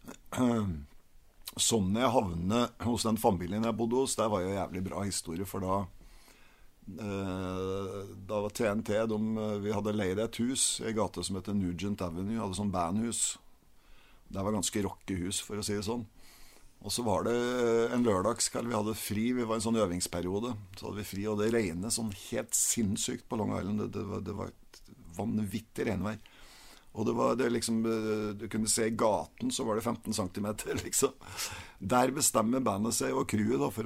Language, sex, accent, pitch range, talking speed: English, male, Swedish, 95-115 Hz, 175 wpm